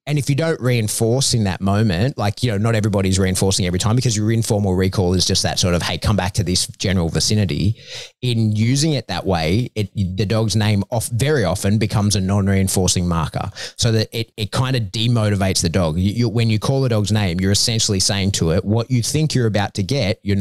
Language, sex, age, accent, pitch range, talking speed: English, male, 30-49, Australian, 90-115 Hz, 230 wpm